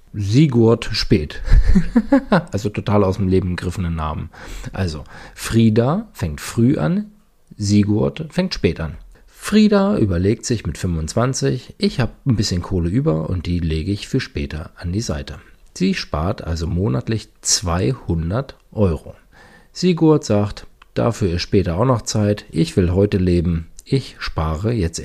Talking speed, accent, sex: 140 wpm, German, male